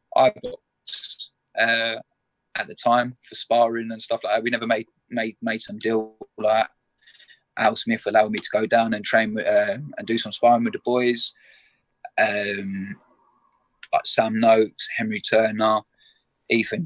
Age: 20-39